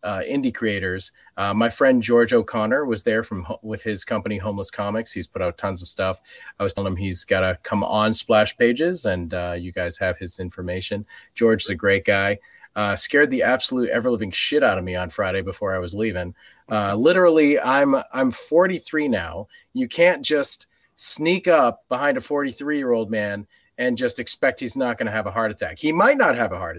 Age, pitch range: 30-49, 100-135 Hz